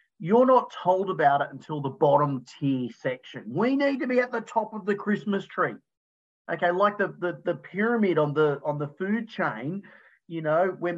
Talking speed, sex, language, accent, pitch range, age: 195 wpm, male, English, Australian, 140-195 Hz, 40-59